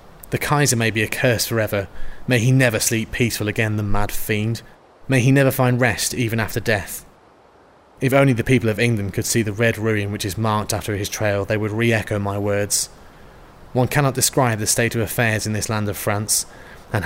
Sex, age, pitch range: male, 20-39, 105-125 Hz